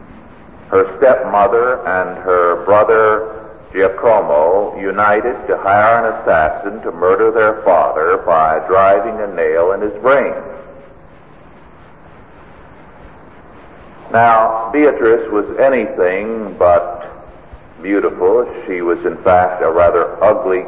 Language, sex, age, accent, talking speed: English, male, 50-69, American, 100 wpm